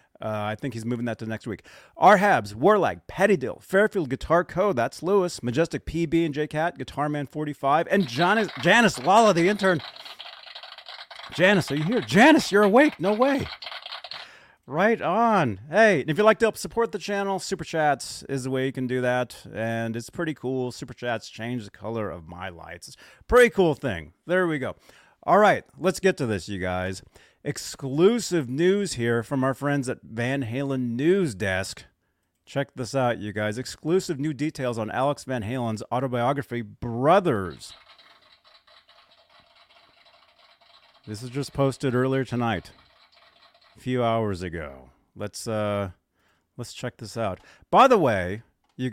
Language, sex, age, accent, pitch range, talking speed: English, male, 30-49, American, 105-165 Hz, 165 wpm